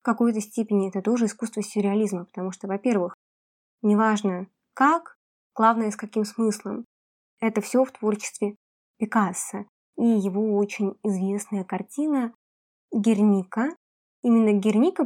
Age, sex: 20-39, female